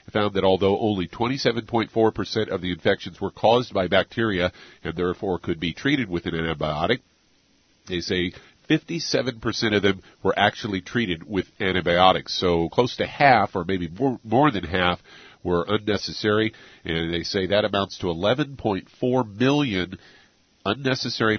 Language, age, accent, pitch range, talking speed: English, 50-69, American, 90-110 Hz, 140 wpm